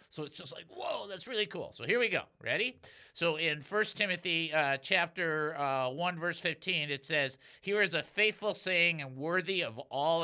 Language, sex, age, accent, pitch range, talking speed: English, male, 50-69, American, 150-220 Hz, 195 wpm